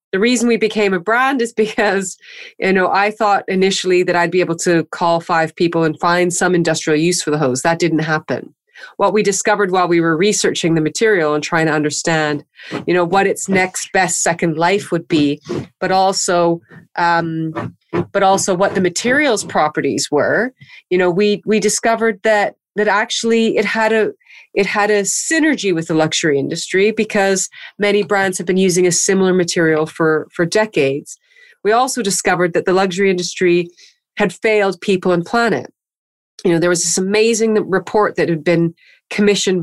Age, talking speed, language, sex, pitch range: 30-49, 180 wpm, English, female, 170-210 Hz